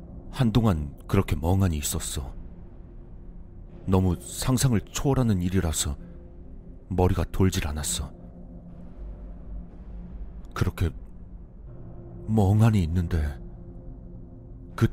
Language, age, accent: Korean, 40-59, native